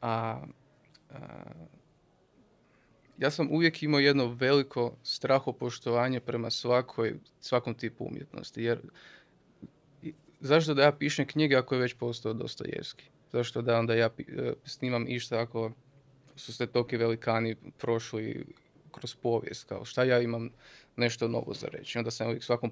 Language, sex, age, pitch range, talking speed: Croatian, male, 20-39, 115-140 Hz, 140 wpm